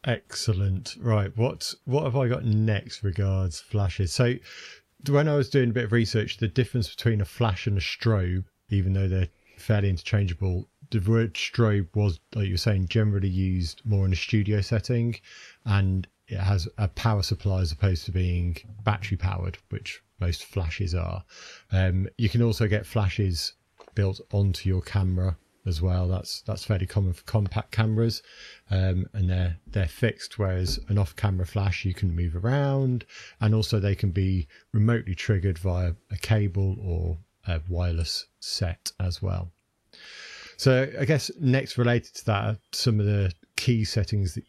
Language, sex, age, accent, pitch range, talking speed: English, male, 30-49, British, 95-110 Hz, 165 wpm